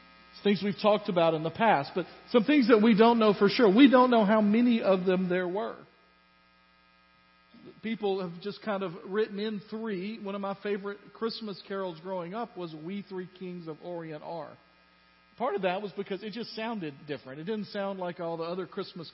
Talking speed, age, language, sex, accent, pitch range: 205 wpm, 50-69, English, male, American, 160-215 Hz